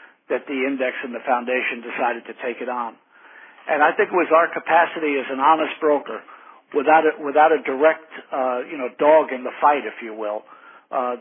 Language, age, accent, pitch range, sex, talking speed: English, 60-79, American, 130-155 Hz, male, 205 wpm